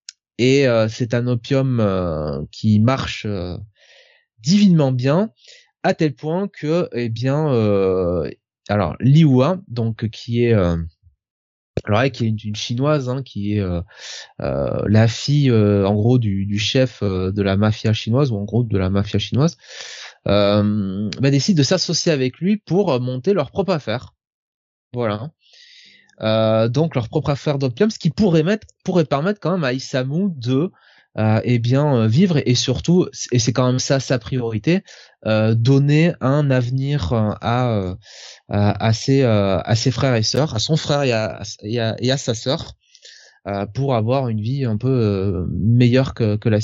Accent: French